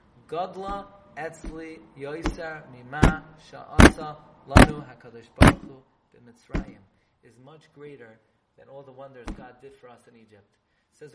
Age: 30-49